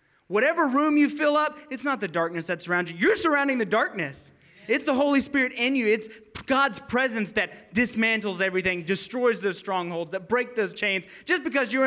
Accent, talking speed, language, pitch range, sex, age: American, 190 wpm, English, 205-280 Hz, male, 20-39